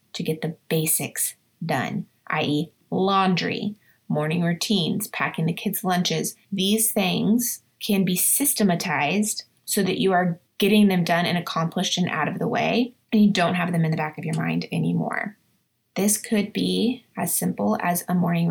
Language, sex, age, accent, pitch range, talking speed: English, female, 20-39, American, 175-210 Hz, 170 wpm